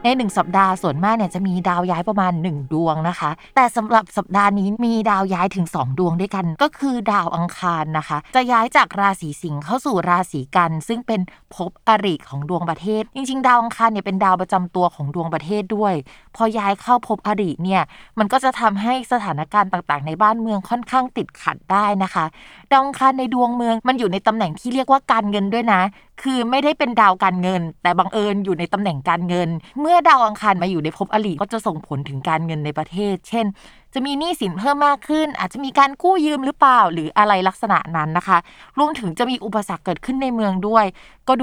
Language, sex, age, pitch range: Thai, female, 20-39, 175-230 Hz